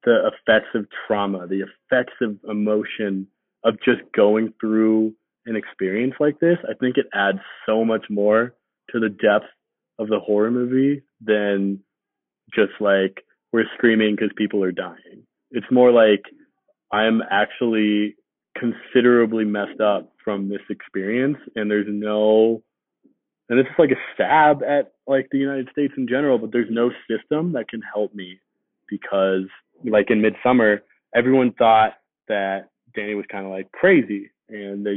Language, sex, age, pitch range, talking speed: English, male, 20-39, 105-125 Hz, 155 wpm